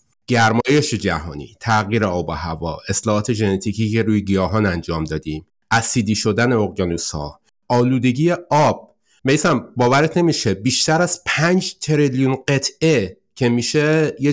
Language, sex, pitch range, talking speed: Persian, male, 95-130 Hz, 125 wpm